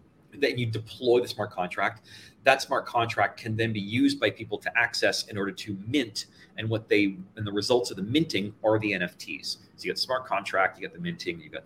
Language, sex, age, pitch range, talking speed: English, male, 30-49, 110-150 Hz, 230 wpm